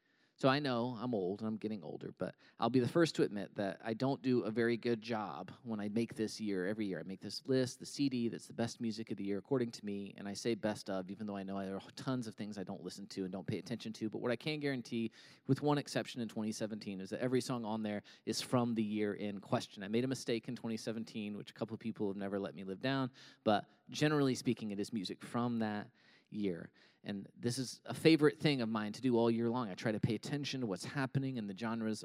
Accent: American